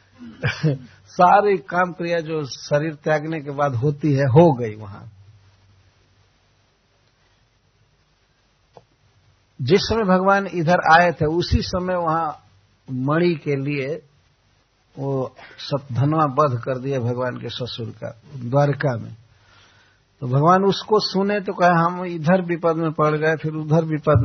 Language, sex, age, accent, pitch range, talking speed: Hindi, male, 60-79, native, 115-160 Hz, 125 wpm